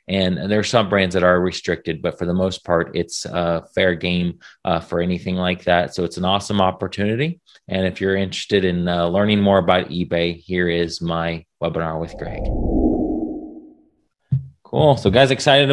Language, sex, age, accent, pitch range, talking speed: English, male, 30-49, American, 90-105 Hz, 180 wpm